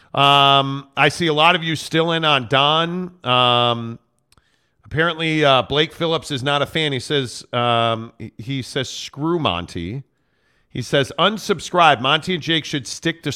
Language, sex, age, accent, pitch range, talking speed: English, male, 40-59, American, 130-165 Hz, 160 wpm